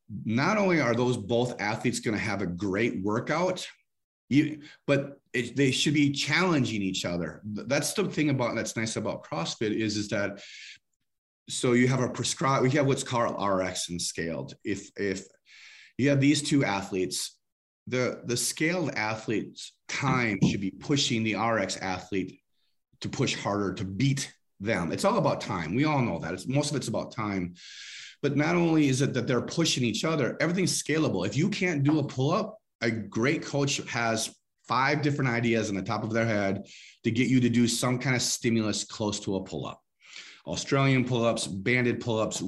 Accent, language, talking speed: American, English, 185 wpm